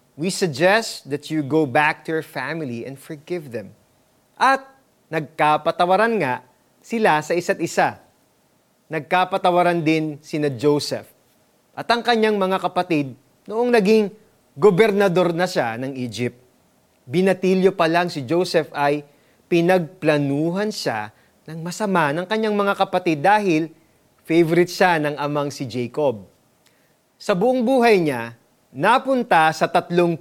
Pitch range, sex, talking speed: 145-195 Hz, male, 125 wpm